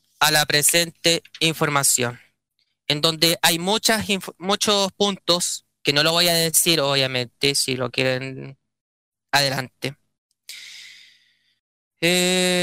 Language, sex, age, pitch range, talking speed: Spanish, male, 20-39, 145-185 Hz, 100 wpm